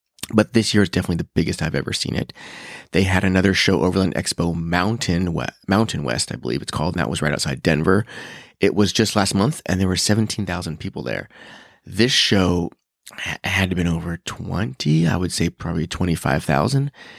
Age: 30-49